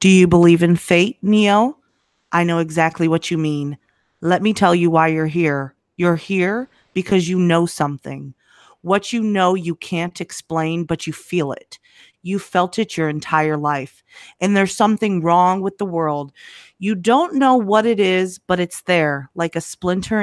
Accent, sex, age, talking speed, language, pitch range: American, female, 40-59, 180 wpm, English, 155-185 Hz